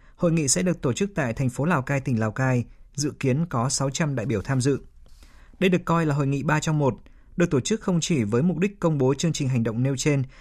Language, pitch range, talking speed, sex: Vietnamese, 120-160 Hz, 270 wpm, male